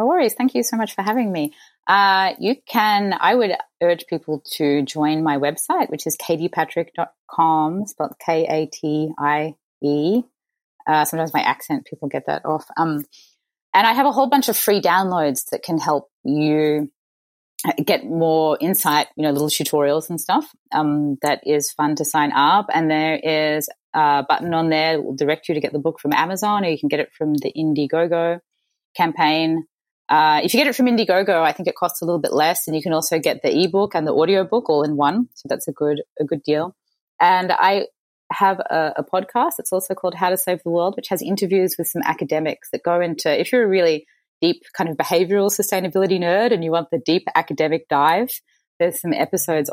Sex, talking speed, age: female, 205 wpm, 20-39